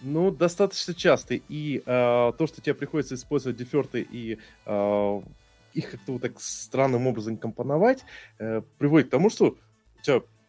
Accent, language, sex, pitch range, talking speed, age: native, Russian, male, 105-140 Hz, 155 wpm, 20-39